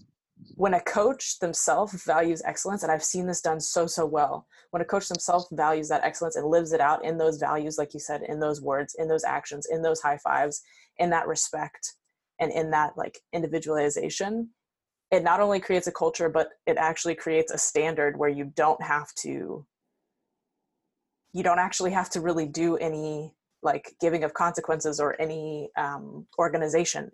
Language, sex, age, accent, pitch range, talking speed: English, female, 20-39, American, 150-165 Hz, 180 wpm